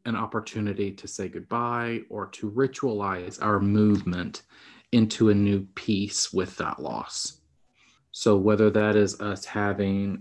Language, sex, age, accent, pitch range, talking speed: English, male, 30-49, American, 100-125 Hz, 135 wpm